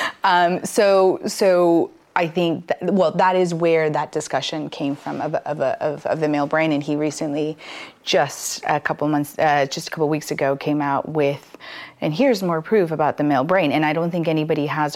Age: 30-49